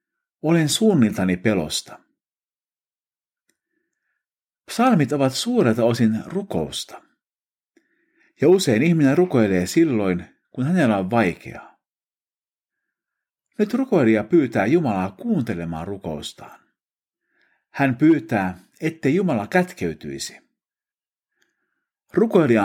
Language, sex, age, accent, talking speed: Finnish, male, 50-69, native, 75 wpm